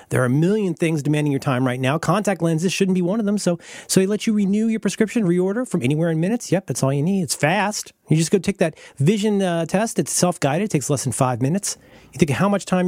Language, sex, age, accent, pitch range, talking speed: English, male, 40-59, American, 140-200 Hz, 275 wpm